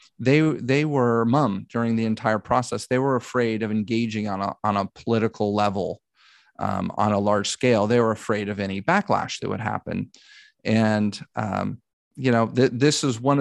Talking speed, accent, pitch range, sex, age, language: 185 wpm, American, 105-120 Hz, male, 30-49, English